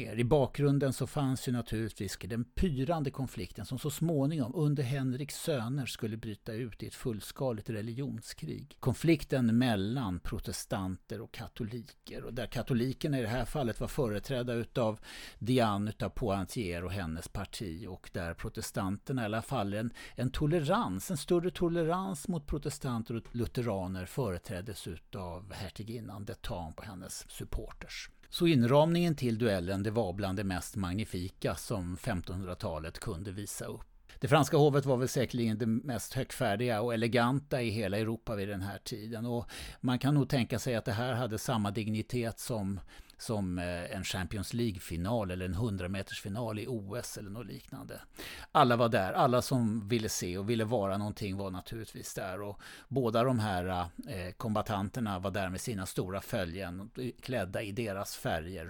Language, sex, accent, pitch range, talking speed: Swedish, male, native, 100-130 Hz, 155 wpm